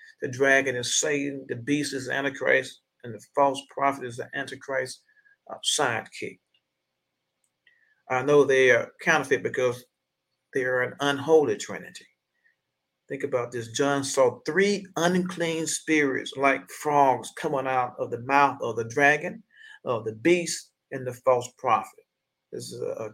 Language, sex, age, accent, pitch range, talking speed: English, male, 50-69, American, 125-170 Hz, 145 wpm